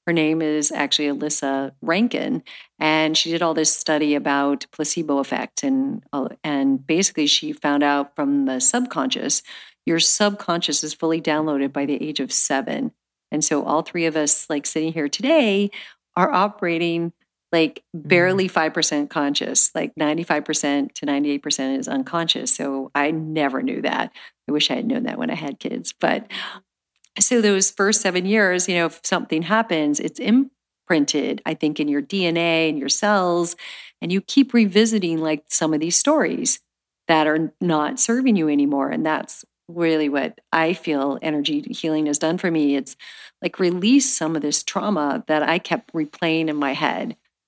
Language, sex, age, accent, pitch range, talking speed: English, female, 50-69, American, 150-200 Hz, 170 wpm